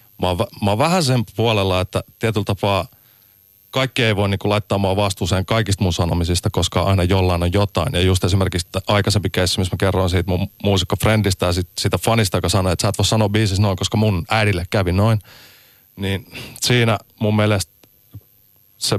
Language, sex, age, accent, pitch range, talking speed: Finnish, male, 30-49, native, 95-115 Hz, 175 wpm